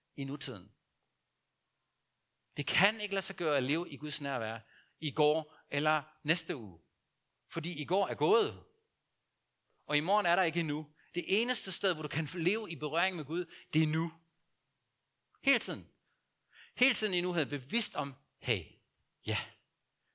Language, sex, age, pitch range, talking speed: Danish, male, 60-79, 130-175 Hz, 165 wpm